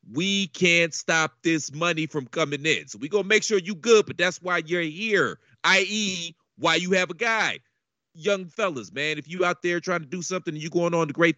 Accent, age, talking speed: American, 40-59, 225 wpm